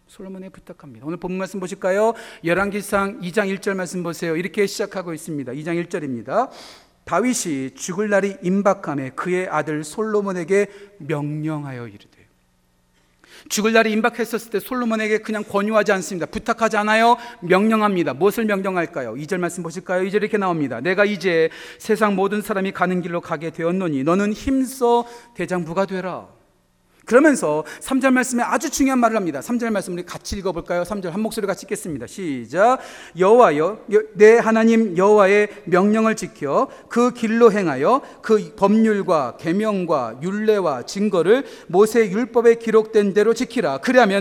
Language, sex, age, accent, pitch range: Korean, male, 40-59, native, 180-235 Hz